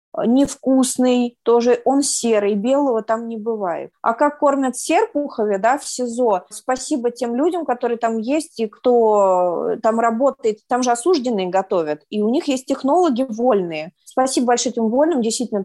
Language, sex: Russian, female